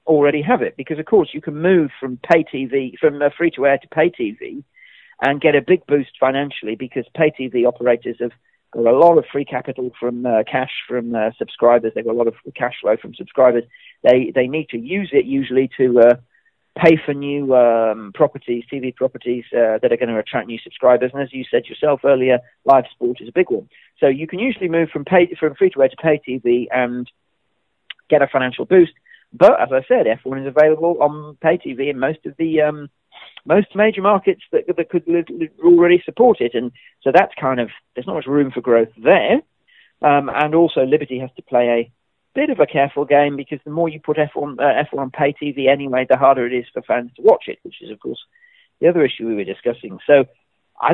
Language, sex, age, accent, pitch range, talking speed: English, male, 40-59, British, 125-165 Hz, 225 wpm